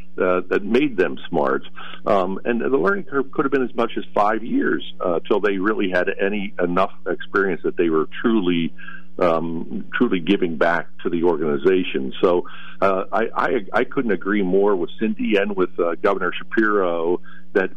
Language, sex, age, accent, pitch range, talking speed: English, male, 50-69, American, 85-105 Hz, 180 wpm